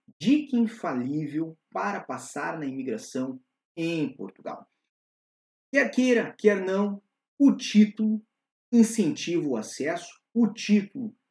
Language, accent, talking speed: Portuguese, Brazilian, 100 wpm